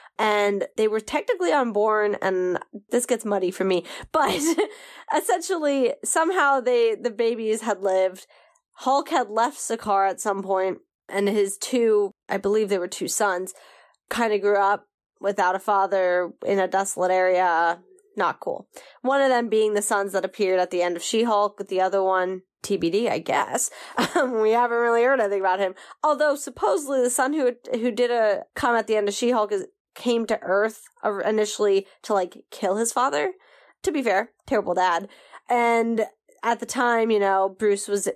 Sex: female